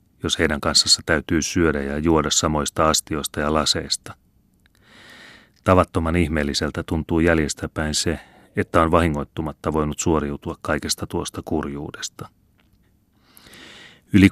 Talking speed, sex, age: 105 wpm, male, 30-49